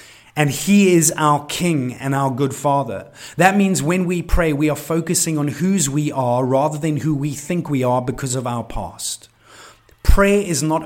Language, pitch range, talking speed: English, 130-160 Hz, 195 wpm